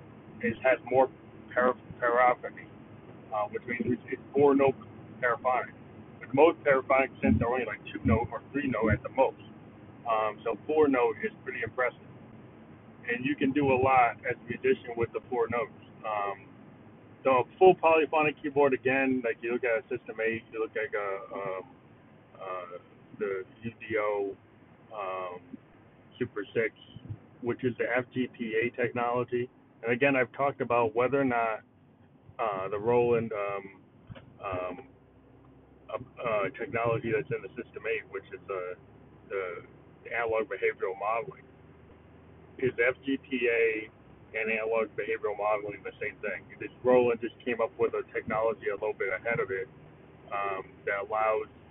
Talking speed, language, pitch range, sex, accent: 150 wpm, English, 115-145 Hz, male, American